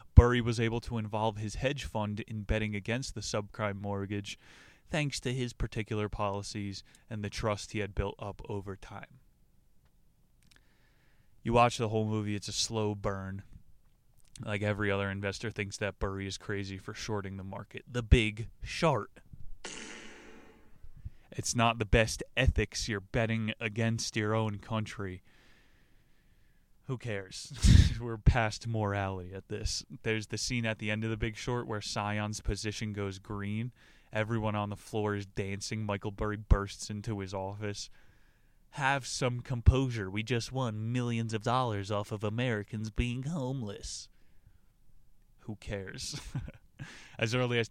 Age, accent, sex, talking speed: 20-39, American, male, 145 wpm